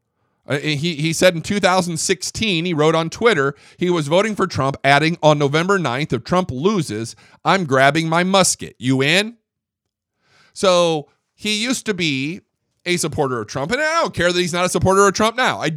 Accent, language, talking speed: American, English, 190 wpm